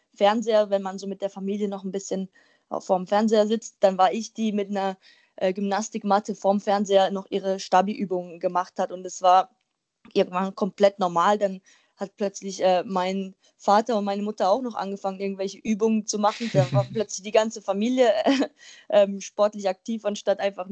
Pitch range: 185-215 Hz